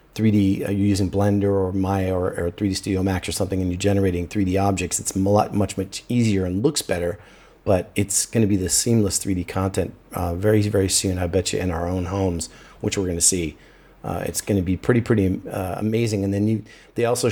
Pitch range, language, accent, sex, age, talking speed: 95-105 Hz, English, American, male, 30-49, 230 wpm